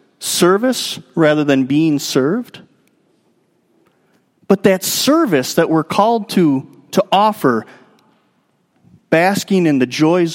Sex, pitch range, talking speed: male, 150-230 Hz, 105 wpm